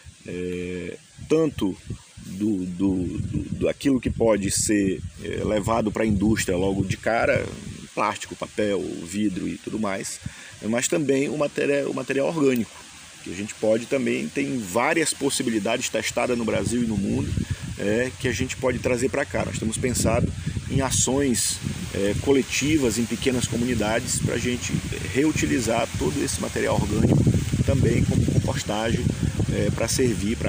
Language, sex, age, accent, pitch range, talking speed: Portuguese, male, 40-59, Brazilian, 105-130 Hz, 155 wpm